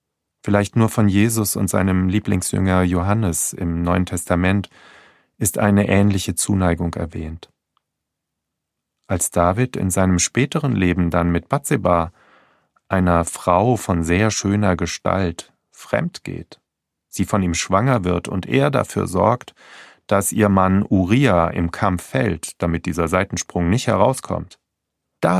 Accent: German